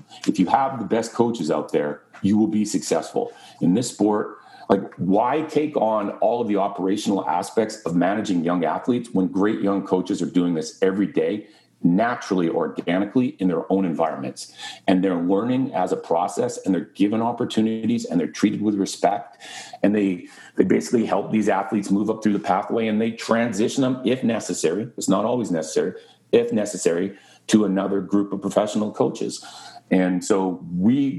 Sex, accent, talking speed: male, American, 175 wpm